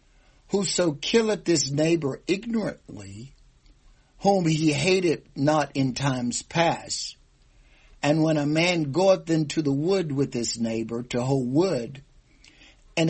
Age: 60-79